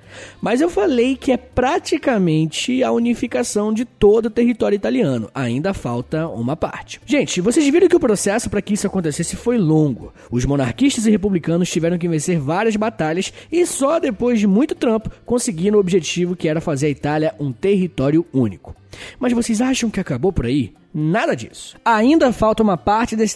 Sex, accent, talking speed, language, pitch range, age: male, Brazilian, 175 wpm, Portuguese, 165-240 Hz, 20-39